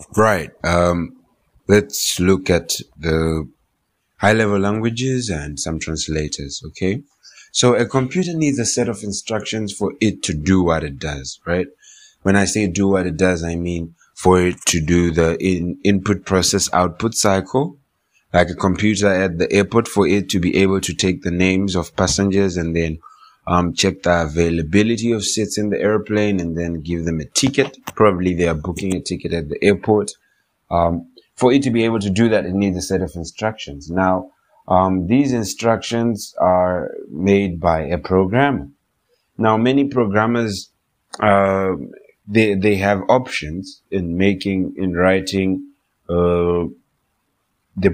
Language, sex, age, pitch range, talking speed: English, male, 30-49, 85-105 Hz, 160 wpm